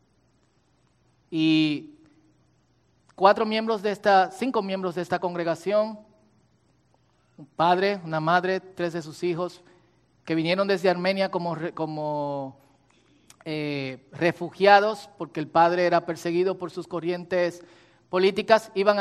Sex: male